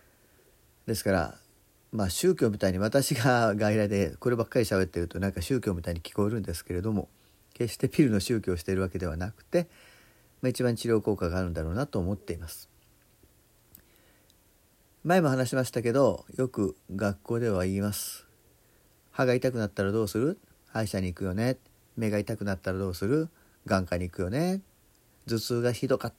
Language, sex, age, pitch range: Japanese, male, 40-59, 100-135 Hz